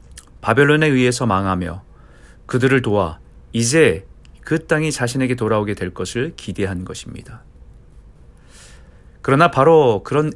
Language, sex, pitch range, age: Korean, male, 90-130 Hz, 40-59